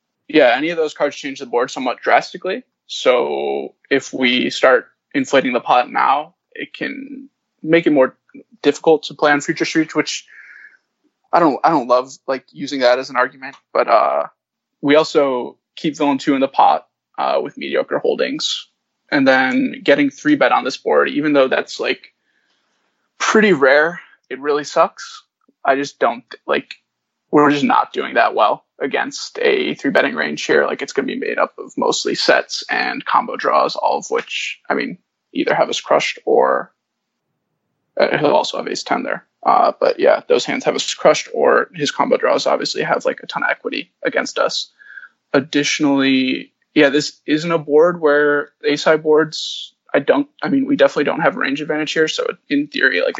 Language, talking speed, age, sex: English, 185 wpm, 20-39, male